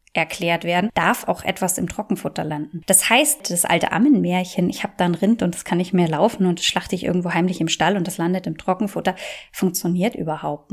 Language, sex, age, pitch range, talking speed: German, female, 20-39, 175-205 Hz, 215 wpm